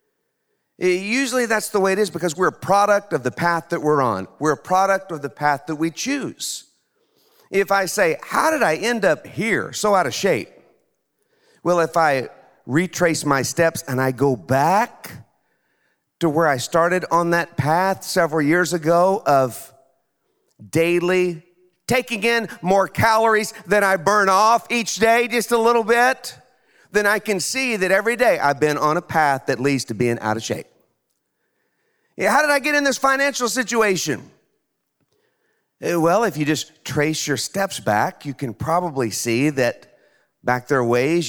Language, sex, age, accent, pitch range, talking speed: English, male, 50-69, American, 140-215 Hz, 170 wpm